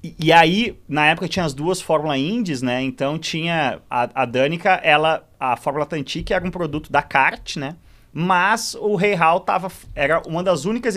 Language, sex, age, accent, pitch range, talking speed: Portuguese, male, 30-49, Brazilian, 125-180 Hz, 180 wpm